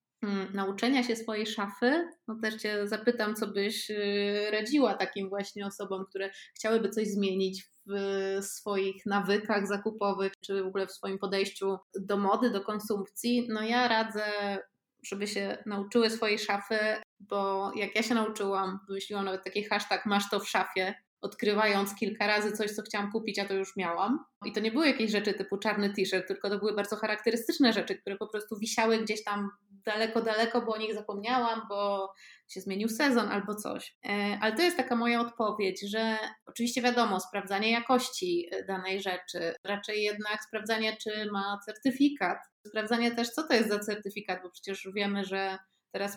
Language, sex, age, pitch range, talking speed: Polish, female, 20-39, 195-220 Hz, 165 wpm